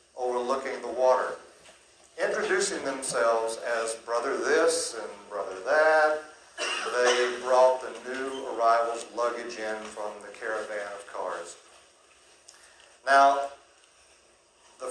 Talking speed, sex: 100 wpm, male